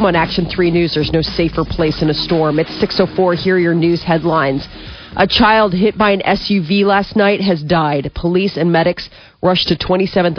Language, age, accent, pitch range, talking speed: English, 40-59, American, 160-185 Hz, 195 wpm